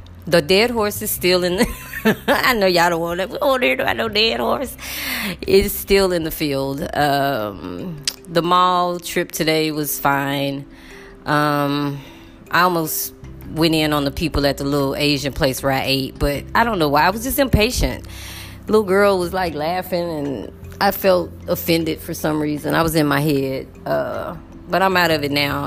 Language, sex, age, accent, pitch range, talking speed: English, female, 20-39, American, 135-175 Hz, 185 wpm